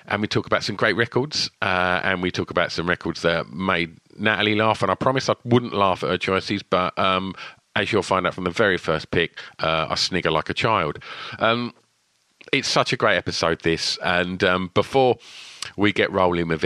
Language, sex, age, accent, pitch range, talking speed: English, male, 40-59, British, 95-120 Hz, 210 wpm